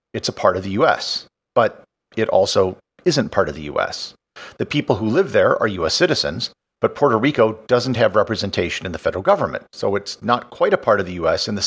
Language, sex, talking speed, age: English, male, 220 wpm, 50-69